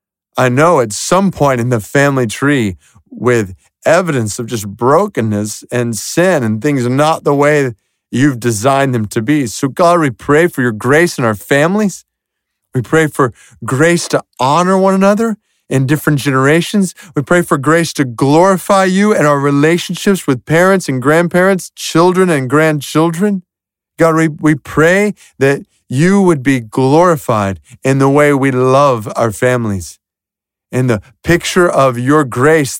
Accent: American